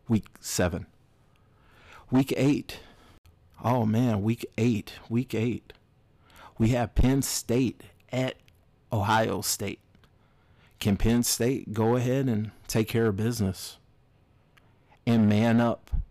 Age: 50-69